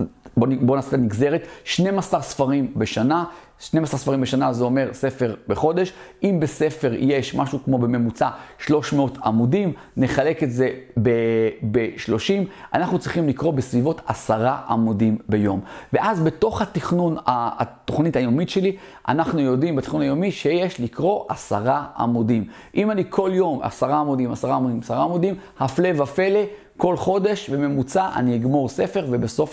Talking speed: 135 wpm